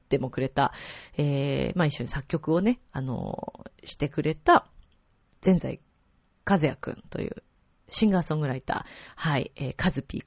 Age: 40-59